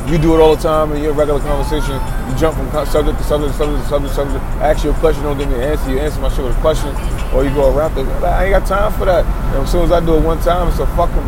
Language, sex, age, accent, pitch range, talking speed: English, male, 20-39, American, 145-170 Hz, 315 wpm